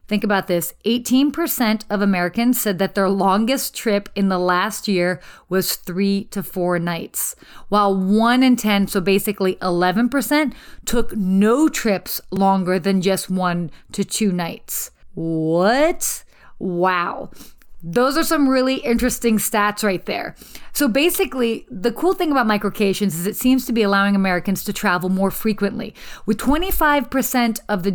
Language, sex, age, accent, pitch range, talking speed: English, female, 30-49, American, 190-240 Hz, 150 wpm